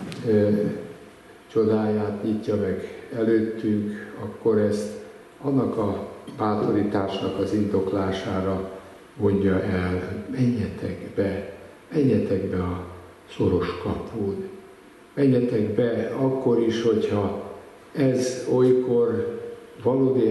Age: 60-79